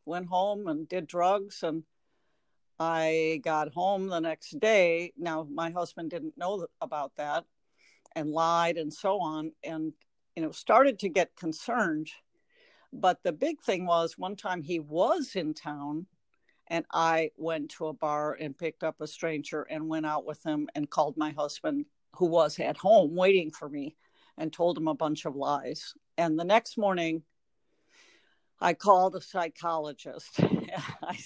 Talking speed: 165 wpm